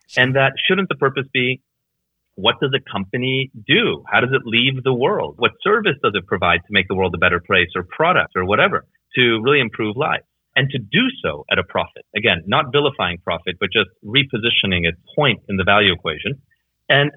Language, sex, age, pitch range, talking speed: English, male, 30-49, 110-150 Hz, 205 wpm